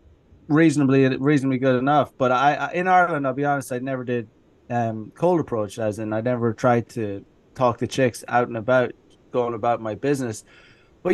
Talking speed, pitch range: 190 wpm, 125-155 Hz